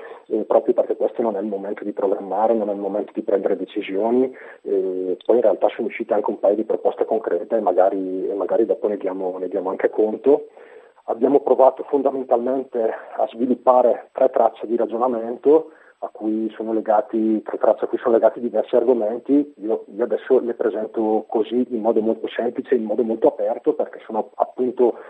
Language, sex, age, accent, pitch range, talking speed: Italian, male, 40-59, native, 110-145 Hz, 170 wpm